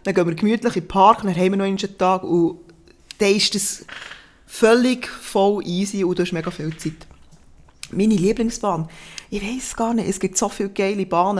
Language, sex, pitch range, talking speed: German, female, 180-220 Hz, 200 wpm